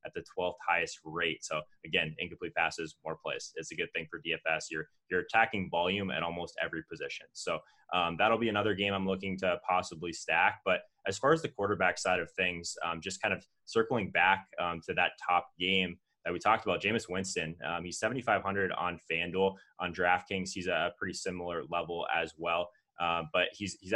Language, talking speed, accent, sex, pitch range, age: English, 200 wpm, American, male, 85-100 Hz, 20-39